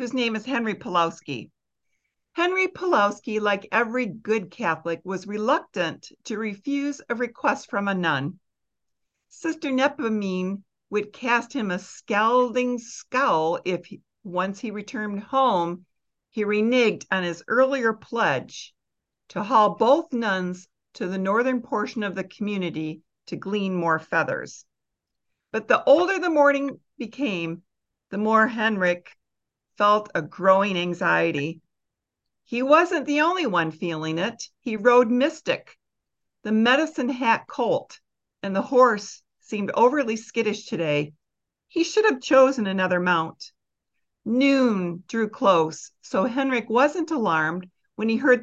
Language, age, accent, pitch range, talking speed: English, 50-69, American, 185-260 Hz, 130 wpm